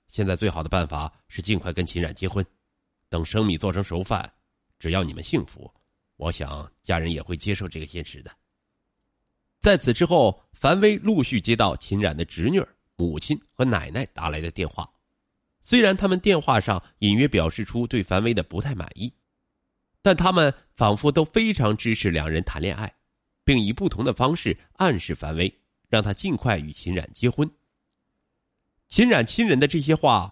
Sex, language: male, Chinese